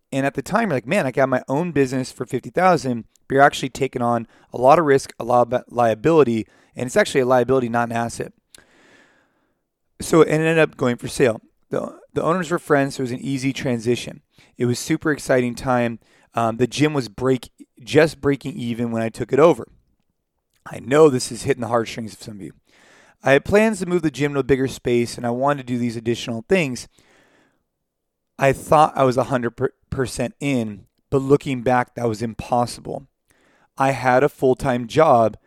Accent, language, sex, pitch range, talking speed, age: American, English, male, 120-140 Hz, 205 wpm, 30-49